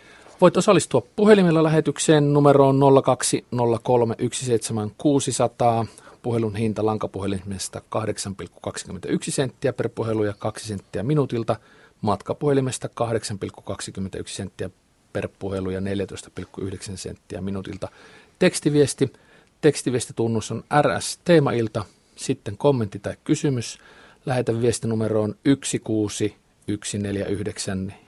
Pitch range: 105-135 Hz